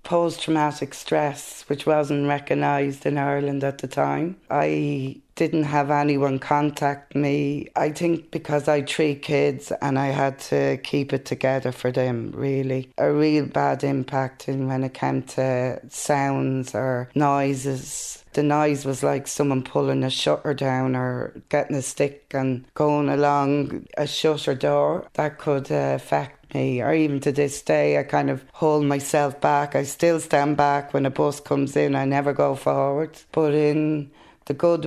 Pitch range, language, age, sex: 135-150 Hz, English, 20-39, female